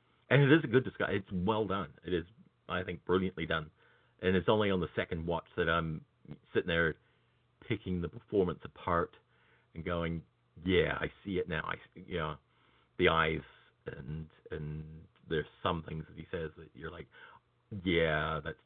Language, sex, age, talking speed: English, male, 40-59, 165 wpm